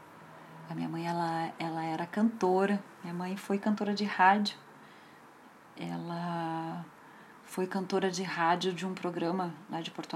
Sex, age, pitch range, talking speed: female, 40-59, 165-200 Hz, 140 wpm